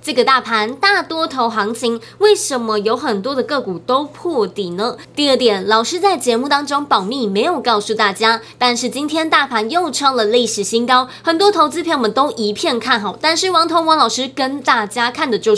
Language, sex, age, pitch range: Chinese, female, 20-39, 225-315 Hz